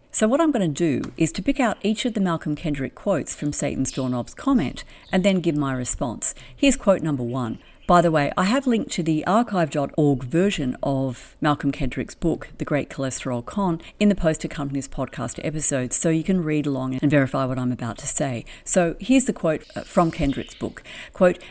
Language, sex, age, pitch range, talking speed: English, female, 50-69, 135-190 Hz, 205 wpm